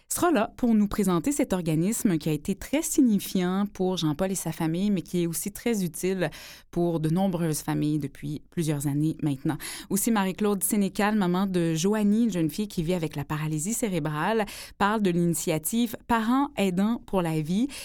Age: 20-39